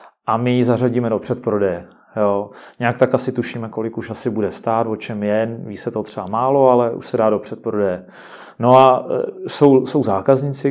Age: 30-49